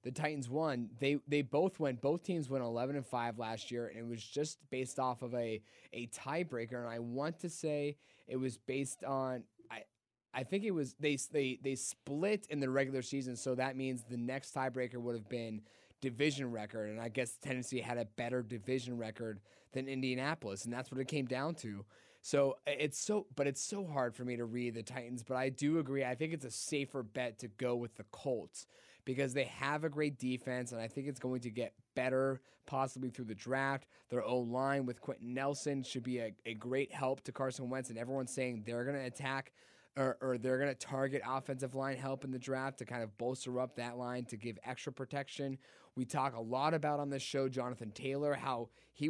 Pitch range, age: 120-140 Hz, 20-39